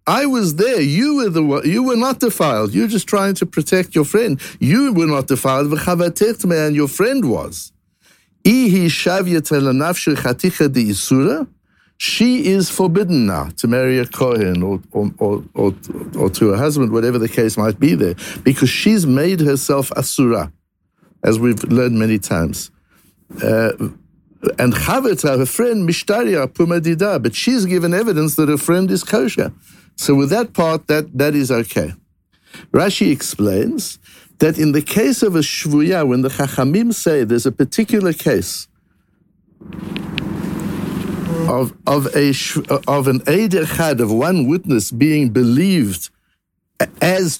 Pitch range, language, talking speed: 140-190 Hz, English, 145 wpm